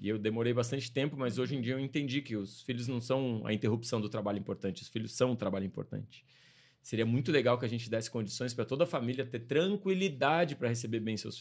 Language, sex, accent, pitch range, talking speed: Portuguese, male, Brazilian, 120-170 Hz, 240 wpm